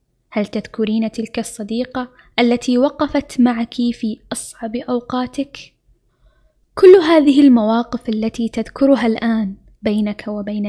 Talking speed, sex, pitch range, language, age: 100 wpm, female, 220-275 Hz, Arabic, 10-29